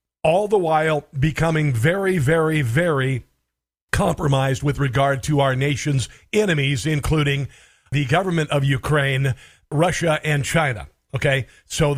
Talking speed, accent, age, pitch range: 120 wpm, American, 50-69, 135-165 Hz